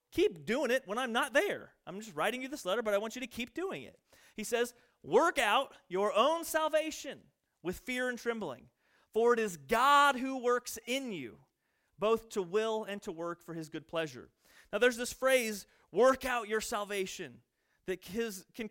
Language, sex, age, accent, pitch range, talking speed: English, male, 30-49, American, 200-260 Hz, 190 wpm